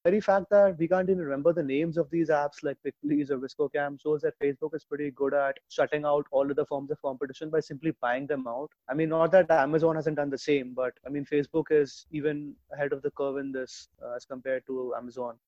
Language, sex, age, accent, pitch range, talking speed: English, male, 20-39, Indian, 140-170 Hz, 245 wpm